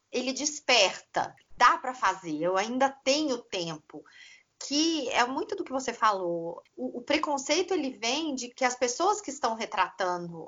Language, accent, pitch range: Portuguese, Brazilian, 190-290 Hz